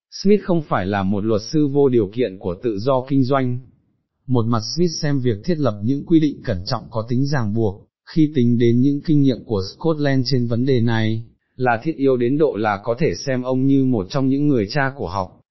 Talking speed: 235 wpm